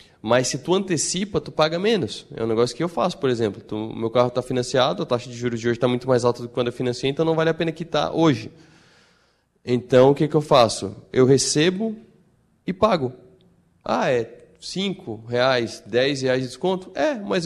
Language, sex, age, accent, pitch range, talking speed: Portuguese, male, 20-39, Brazilian, 125-160 Hz, 205 wpm